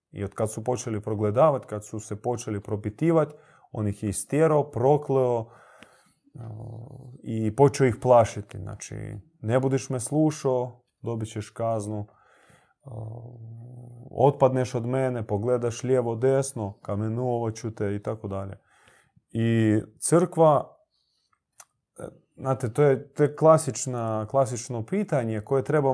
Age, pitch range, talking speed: 30-49, 105-135 Hz, 120 wpm